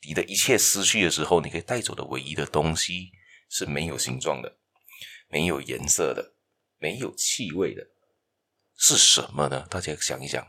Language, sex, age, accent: Chinese, male, 20-39, native